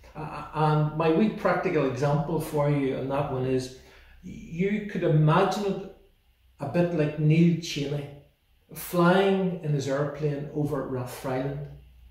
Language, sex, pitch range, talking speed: English, male, 130-155 Hz, 135 wpm